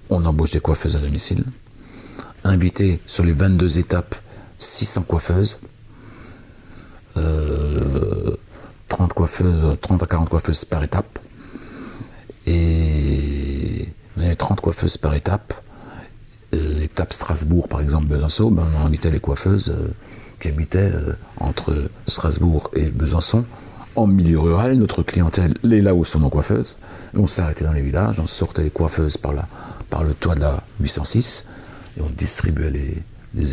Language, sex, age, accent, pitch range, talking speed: French, male, 60-79, French, 80-110 Hz, 145 wpm